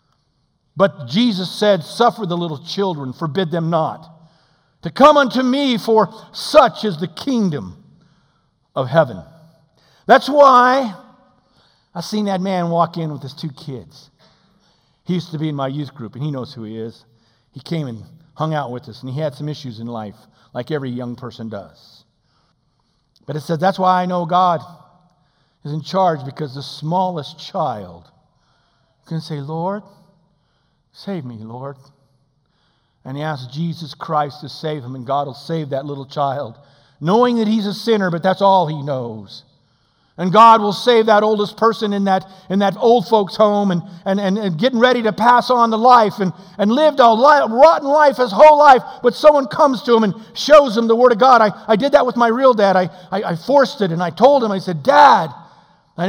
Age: 50-69